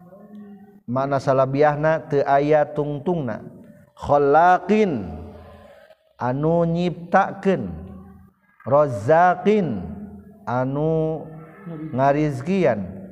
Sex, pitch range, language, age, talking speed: male, 135-190 Hz, Indonesian, 50-69, 50 wpm